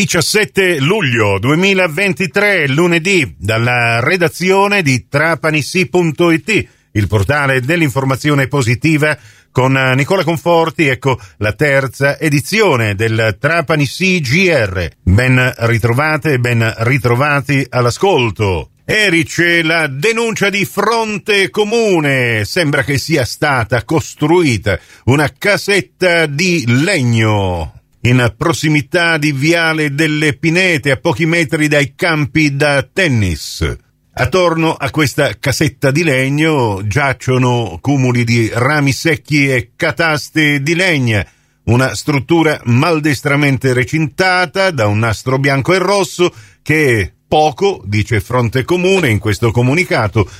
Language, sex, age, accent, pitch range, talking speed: Italian, male, 50-69, native, 120-170 Hz, 105 wpm